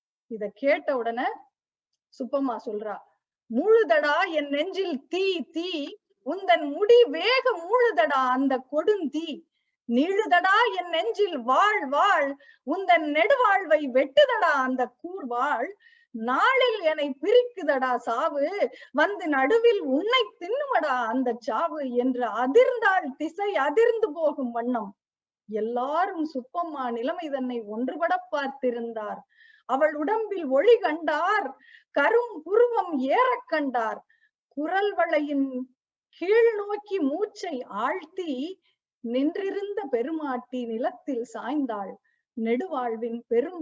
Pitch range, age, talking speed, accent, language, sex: 250-375 Hz, 20-39, 95 wpm, native, Tamil, female